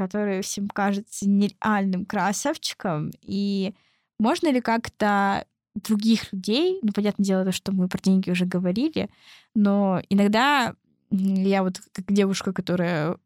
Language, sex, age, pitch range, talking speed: Russian, female, 20-39, 195-245 Hz, 125 wpm